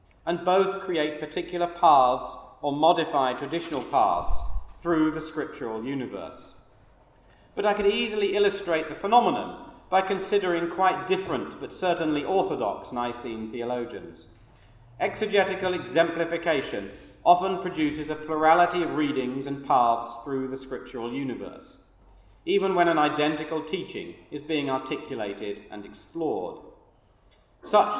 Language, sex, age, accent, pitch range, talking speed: English, male, 40-59, British, 130-190 Hz, 115 wpm